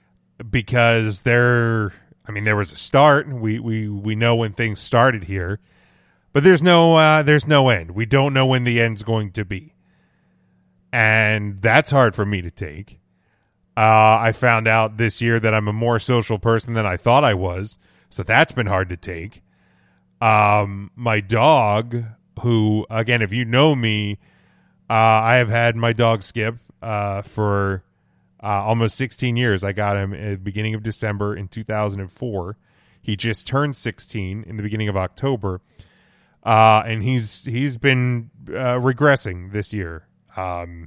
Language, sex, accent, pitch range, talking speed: English, male, American, 105-125 Hz, 170 wpm